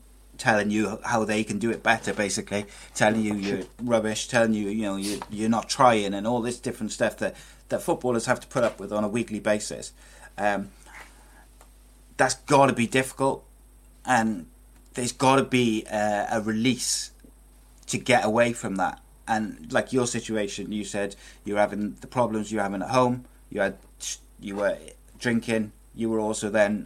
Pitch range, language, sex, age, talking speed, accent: 105-125 Hz, English, male, 30-49, 175 wpm, British